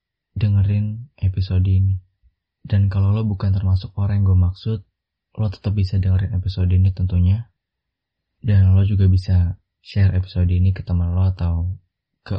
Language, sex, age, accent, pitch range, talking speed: Indonesian, male, 20-39, native, 90-100 Hz, 150 wpm